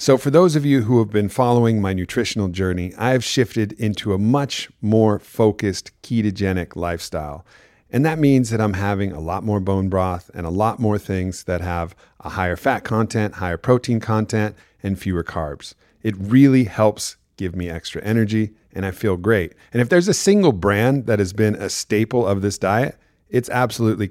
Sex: male